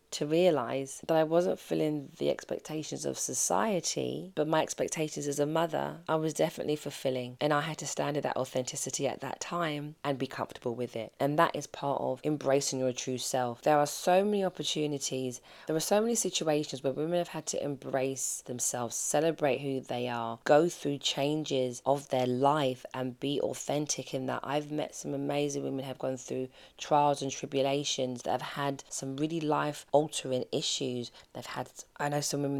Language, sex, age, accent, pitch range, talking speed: English, female, 20-39, British, 130-155 Hz, 190 wpm